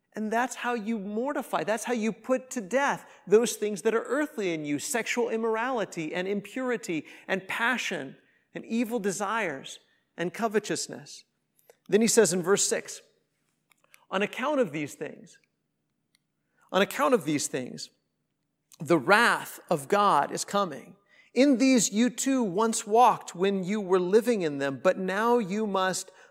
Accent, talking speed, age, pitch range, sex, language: American, 155 wpm, 50-69, 180-235 Hz, male, English